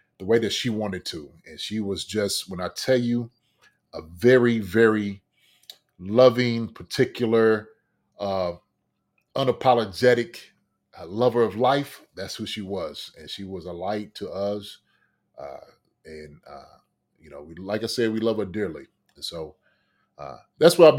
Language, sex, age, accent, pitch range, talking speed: English, male, 30-49, American, 95-115 Hz, 155 wpm